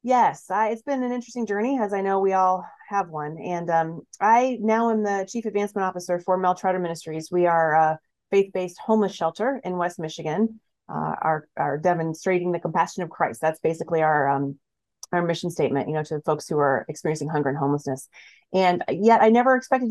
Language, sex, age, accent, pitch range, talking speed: English, female, 30-49, American, 180-220 Hz, 195 wpm